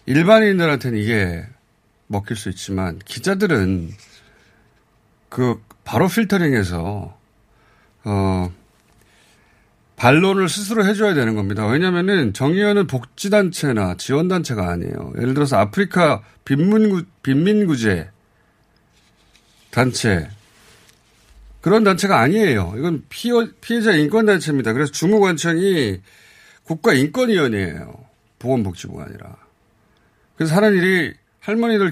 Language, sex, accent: Korean, male, native